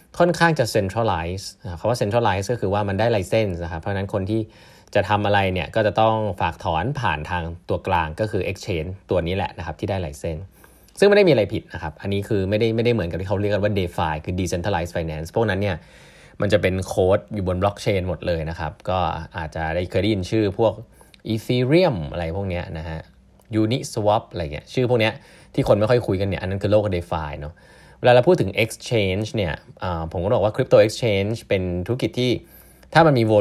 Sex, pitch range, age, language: male, 85-110 Hz, 20-39, Thai